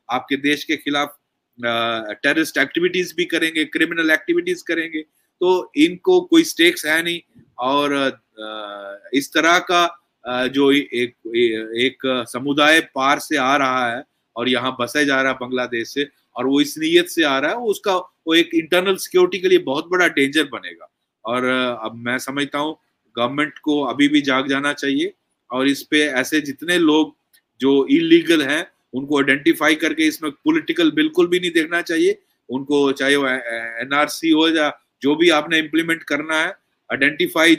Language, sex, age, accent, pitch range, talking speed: English, male, 30-49, Indian, 135-180 Hz, 135 wpm